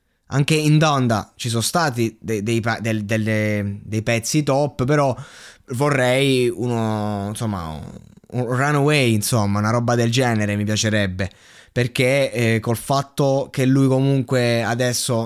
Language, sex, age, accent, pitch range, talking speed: Italian, male, 20-39, native, 120-155 Hz, 135 wpm